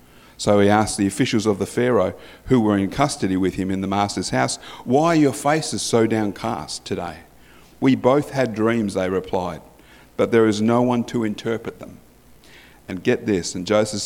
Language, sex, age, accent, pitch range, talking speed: English, male, 50-69, Australian, 95-120 Hz, 190 wpm